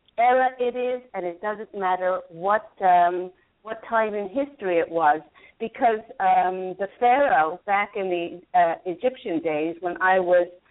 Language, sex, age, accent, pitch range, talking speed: English, female, 50-69, American, 180-225 Hz, 150 wpm